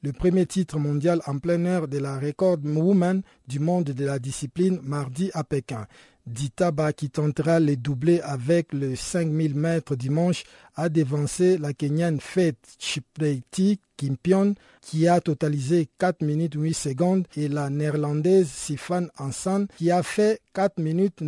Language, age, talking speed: French, 50-69, 150 wpm